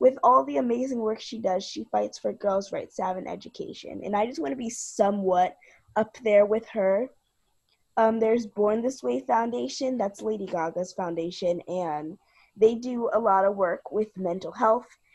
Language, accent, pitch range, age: English, American, 190-245 Hz, 20-39